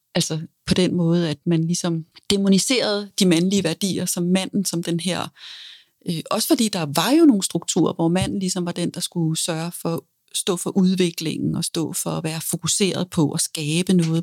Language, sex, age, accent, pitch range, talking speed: Danish, female, 40-59, native, 165-200 Hz, 200 wpm